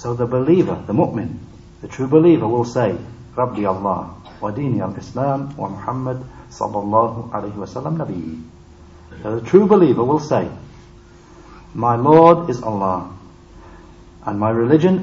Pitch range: 90-145 Hz